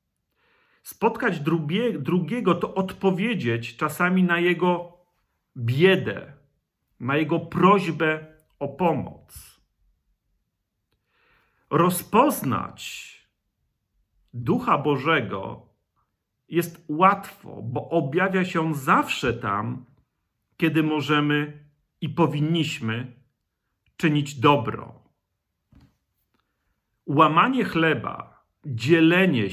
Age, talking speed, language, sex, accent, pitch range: 50-69, 65 wpm, Polish, male, native, 115-175 Hz